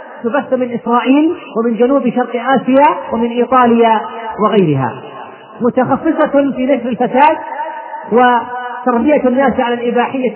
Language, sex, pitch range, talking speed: Arabic, male, 230-275 Hz, 105 wpm